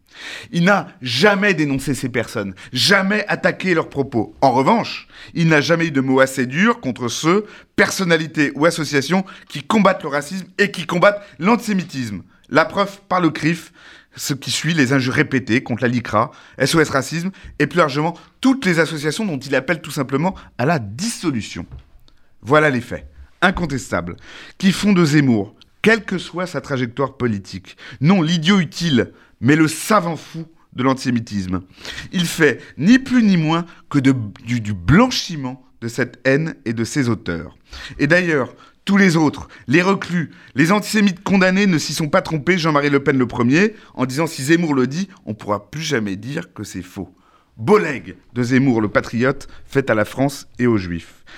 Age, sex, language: 30-49, male, French